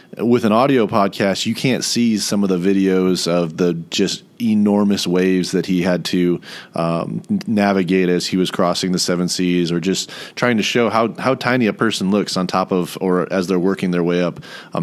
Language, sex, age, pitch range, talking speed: English, male, 30-49, 90-110 Hz, 205 wpm